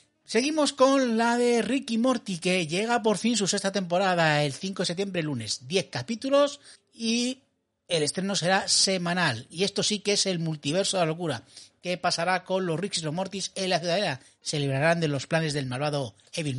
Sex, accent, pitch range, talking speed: male, Spanish, 145-210 Hz, 200 wpm